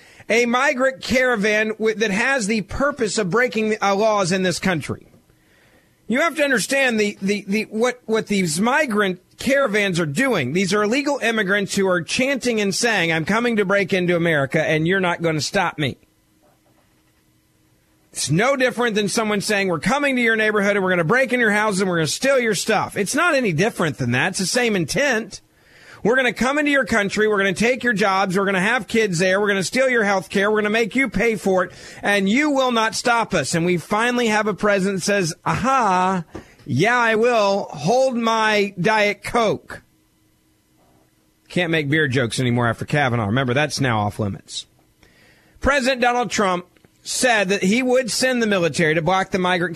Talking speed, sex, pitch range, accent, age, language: 200 wpm, male, 180-235 Hz, American, 40-59, English